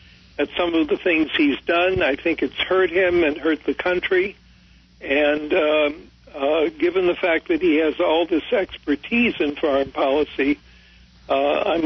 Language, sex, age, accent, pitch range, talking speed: English, male, 60-79, American, 145-195 Hz, 165 wpm